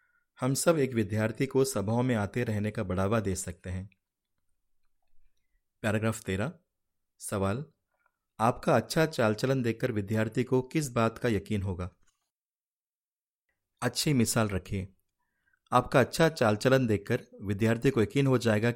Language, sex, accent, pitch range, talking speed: Hindi, male, native, 100-125 Hz, 130 wpm